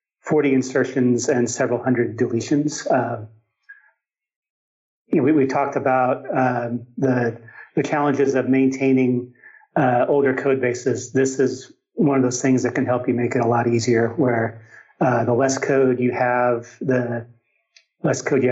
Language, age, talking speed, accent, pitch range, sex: English, 40-59, 150 wpm, American, 120-140 Hz, male